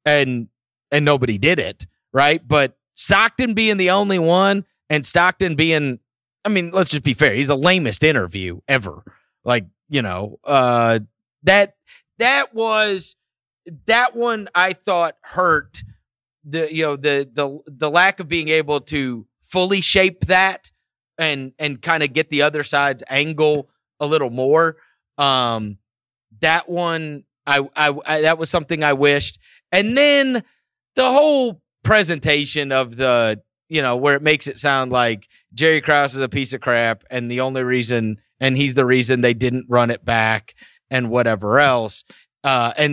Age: 30-49